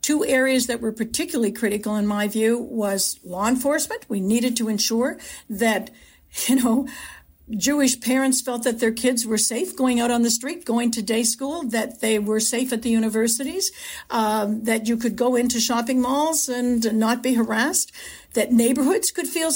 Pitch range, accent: 210-250 Hz, American